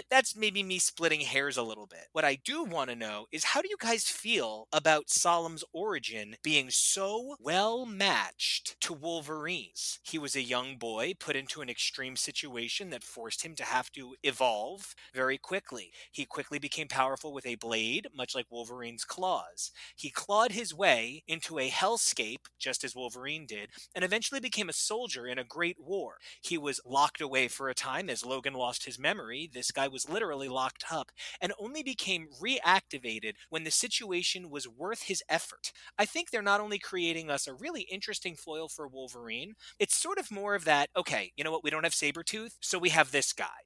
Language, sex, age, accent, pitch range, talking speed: English, male, 30-49, American, 130-190 Hz, 190 wpm